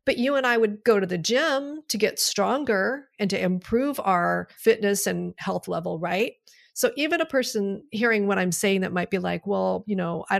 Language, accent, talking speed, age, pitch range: English, American, 215 wpm, 40-59, 195-240 Hz